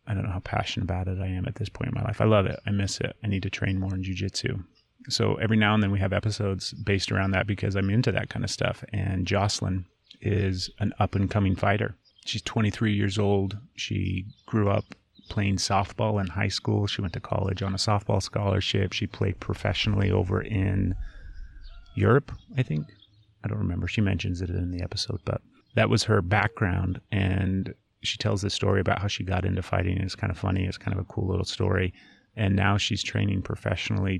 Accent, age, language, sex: American, 30-49, English, male